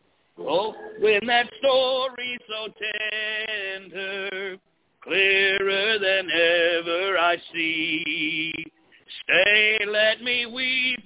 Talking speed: 80 wpm